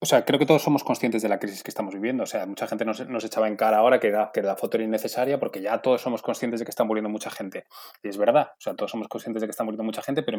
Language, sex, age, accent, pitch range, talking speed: Spanish, male, 20-39, Spanish, 110-130 Hz, 320 wpm